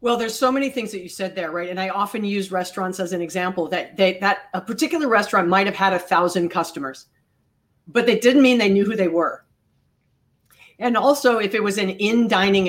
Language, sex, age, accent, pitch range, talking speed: English, female, 40-59, American, 175-220 Hz, 215 wpm